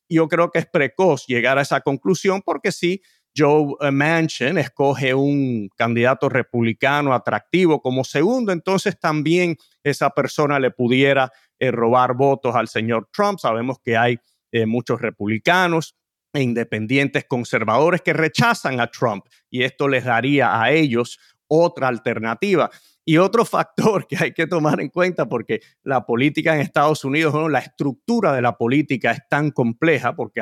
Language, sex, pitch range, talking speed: Spanish, male, 125-160 Hz, 150 wpm